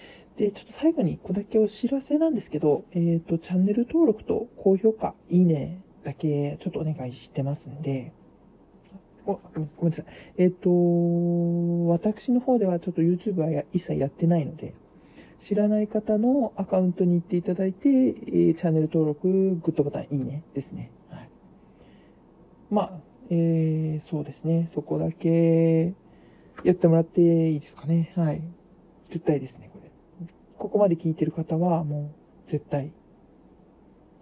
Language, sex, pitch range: Japanese, male, 150-185 Hz